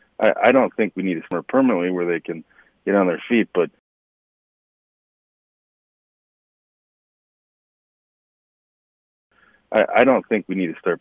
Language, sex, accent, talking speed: English, male, American, 130 wpm